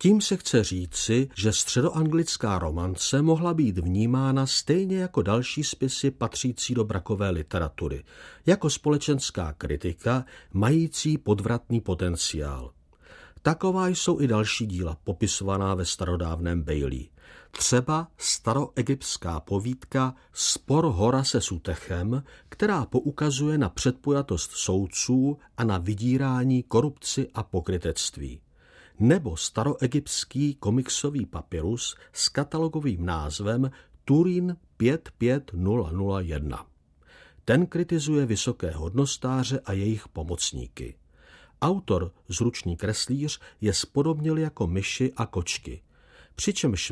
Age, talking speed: 50-69, 100 wpm